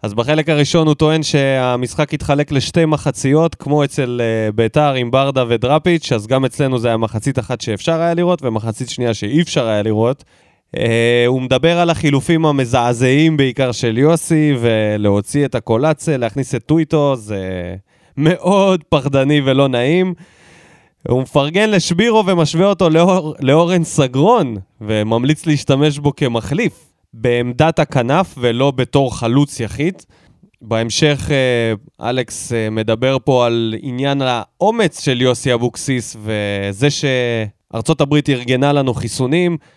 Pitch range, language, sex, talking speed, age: 115-150 Hz, Hebrew, male, 135 wpm, 20-39